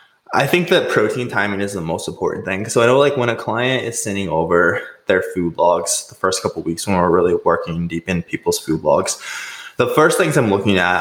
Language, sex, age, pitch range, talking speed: English, male, 20-39, 90-120 Hz, 235 wpm